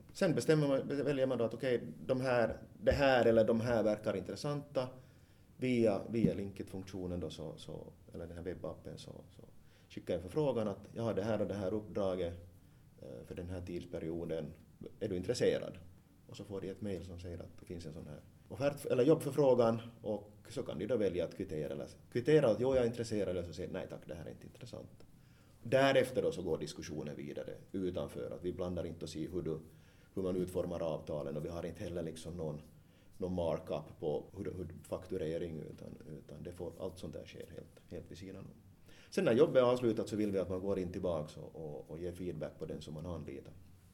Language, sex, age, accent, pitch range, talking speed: Swedish, male, 30-49, Finnish, 90-115 Hz, 210 wpm